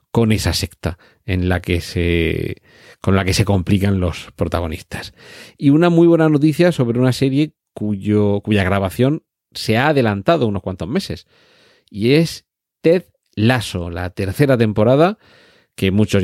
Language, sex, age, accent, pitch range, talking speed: Spanish, male, 40-59, Spanish, 95-120 Hz, 150 wpm